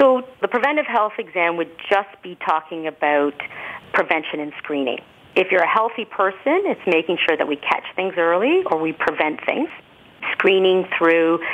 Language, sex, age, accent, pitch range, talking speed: English, female, 40-59, American, 160-210 Hz, 165 wpm